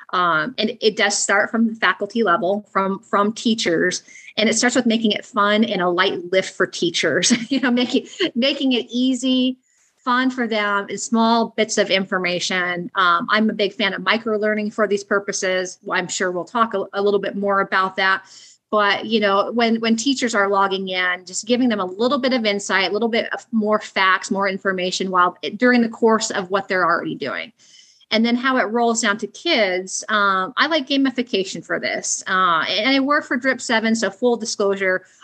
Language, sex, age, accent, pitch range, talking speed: English, female, 30-49, American, 190-225 Hz, 200 wpm